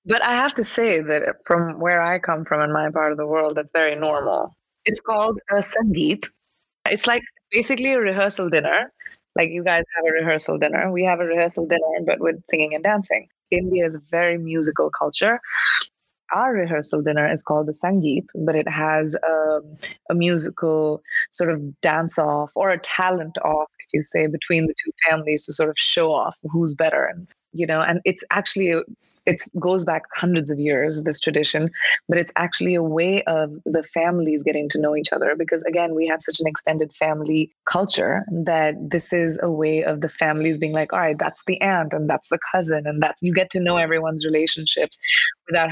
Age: 20-39